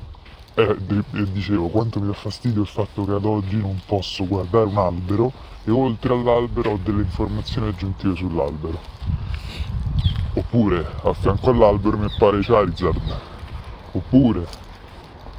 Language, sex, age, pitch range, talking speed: Italian, female, 20-39, 95-115 Hz, 130 wpm